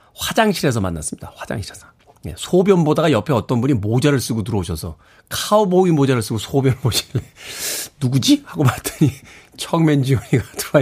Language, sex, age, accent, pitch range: Korean, male, 40-59, native, 120-170 Hz